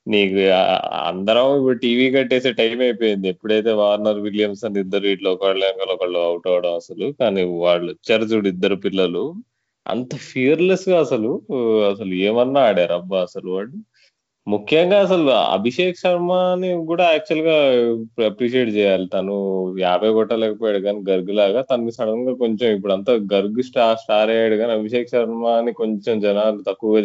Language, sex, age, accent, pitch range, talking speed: Telugu, male, 20-39, native, 95-120 Hz, 145 wpm